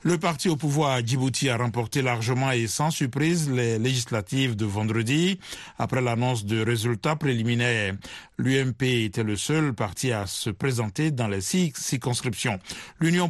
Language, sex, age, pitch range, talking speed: French, male, 60-79, 115-135 Hz, 155 wpm